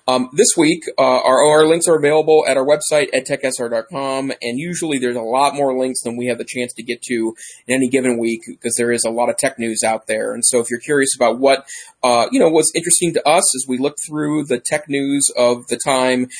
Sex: male